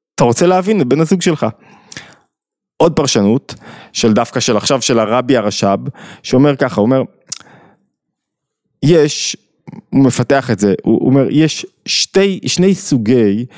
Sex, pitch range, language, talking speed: male, 120-155 Hz, Hebrew, 135 wpm